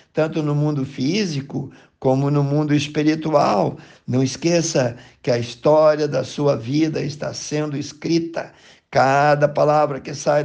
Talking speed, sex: 130 wpm, male